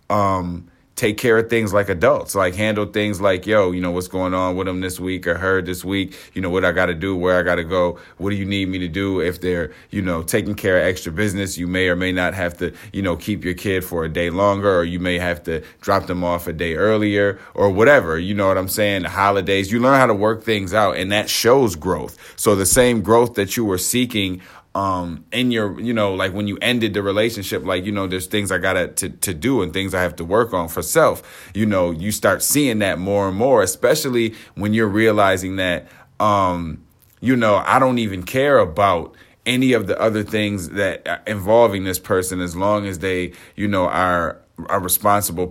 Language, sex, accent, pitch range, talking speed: English, male, American, 90-105 Hz, 235 wpm